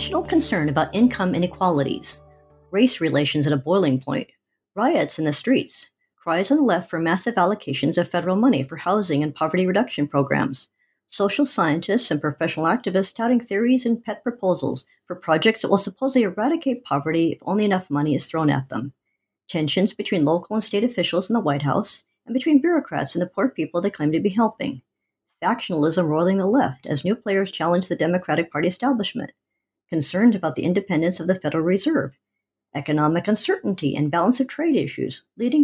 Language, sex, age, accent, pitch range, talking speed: English, male, 60-79, American, 155-230 Hz, 175 wpm